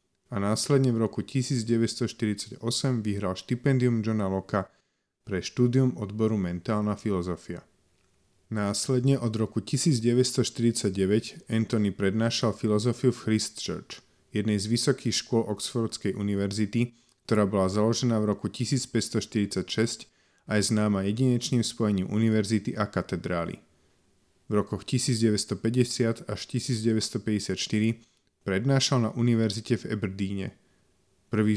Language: Slovak